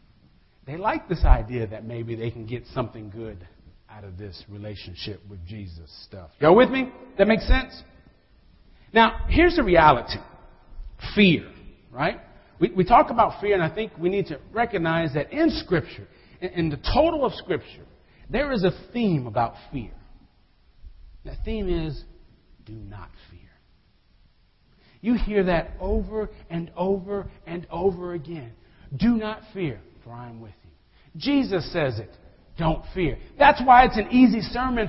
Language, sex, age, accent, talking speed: English, male, 50-69, American, 155 wpm